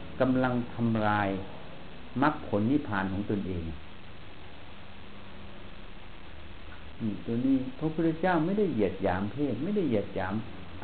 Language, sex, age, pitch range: Thai, male, 60-79, 90-135 Hz